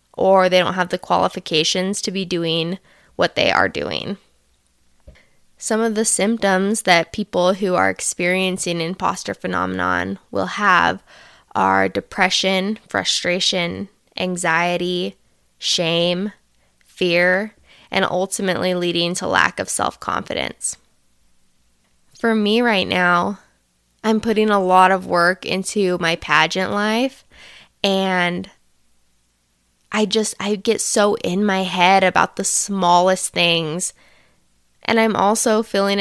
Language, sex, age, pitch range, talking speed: English, female, 20-39, 170-205 Hz, 120 wpm